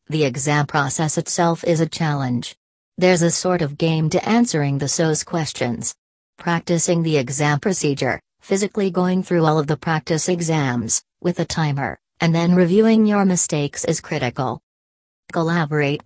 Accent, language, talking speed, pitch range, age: American, English, 150 wpm, 145-175 Hz, 40-59